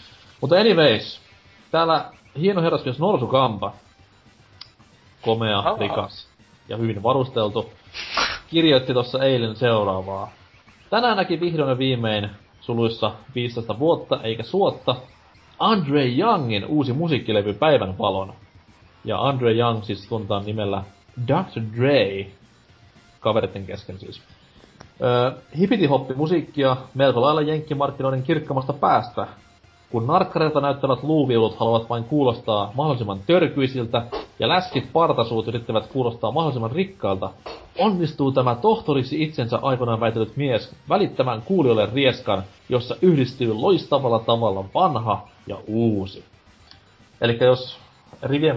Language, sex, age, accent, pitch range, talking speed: Finnish, male, 30-49, native, 105-135 Hz, 105 wpm